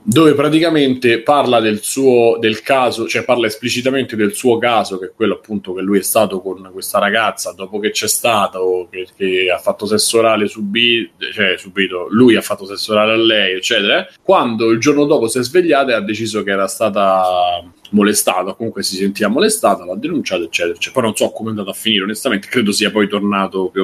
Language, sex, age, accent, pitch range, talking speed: Italian, male, 30-49, native, 100-125 Hz, 205 wpm